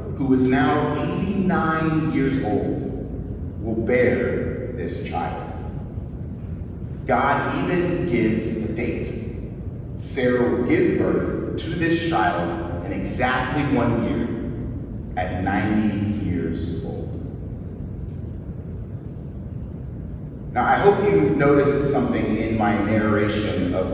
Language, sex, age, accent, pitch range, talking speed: English, male, 30-49, American, 105-140 Hz, 100 wpm